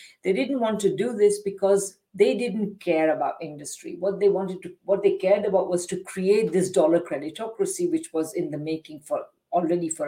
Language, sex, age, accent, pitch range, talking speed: English, female, 50-69, Indian, 175-245 Hz, 200 wpm